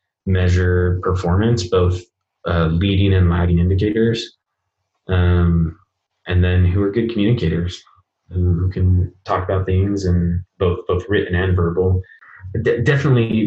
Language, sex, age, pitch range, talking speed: English, male, 20-39, 90-110 Hz, 120 wpm